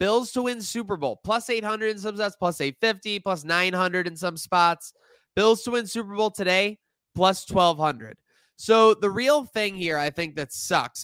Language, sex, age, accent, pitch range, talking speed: English, male, 20-39, American, 140-185 Hz, 185 wpm